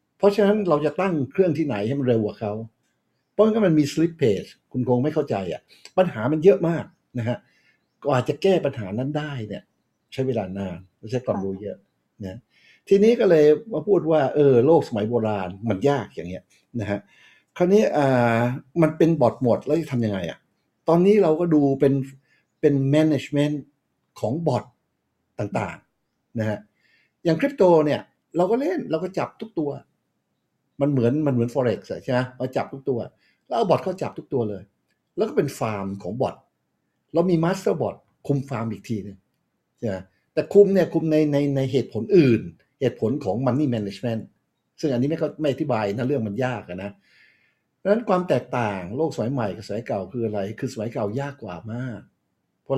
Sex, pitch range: male, 110-155 Hz